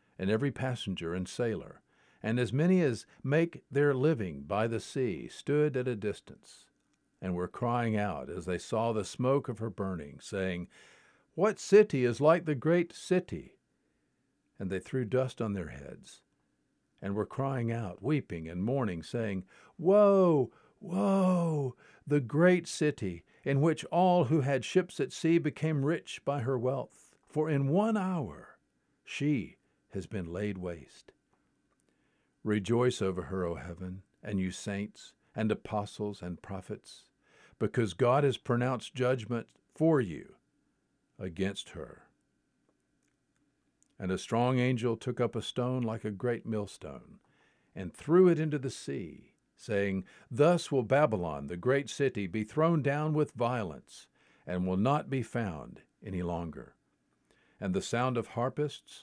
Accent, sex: American, male